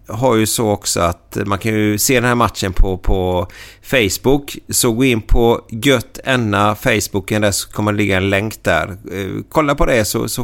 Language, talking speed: Swedish, 200 wpm